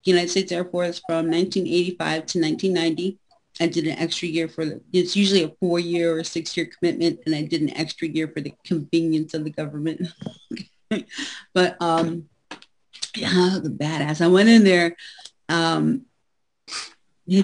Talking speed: 150 wpm